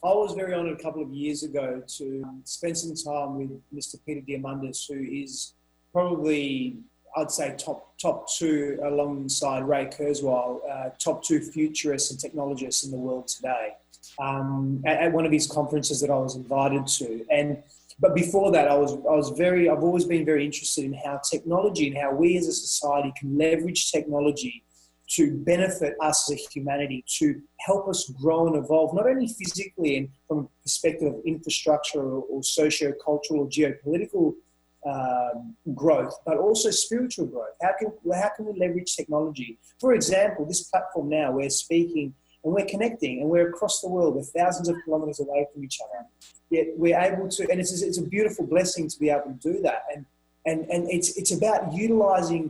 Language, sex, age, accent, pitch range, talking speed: English, male, 20-39, Australian, 140-175 Hz, 185 wpm